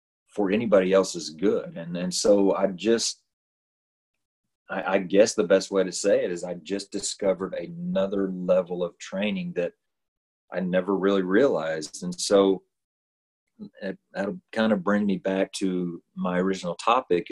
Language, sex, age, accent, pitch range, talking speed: English, male, 40-59, American, 90-105 Hz, 155 wpm